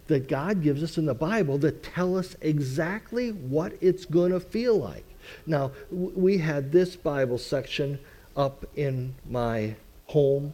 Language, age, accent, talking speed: English, 50-69, American, 155 wpm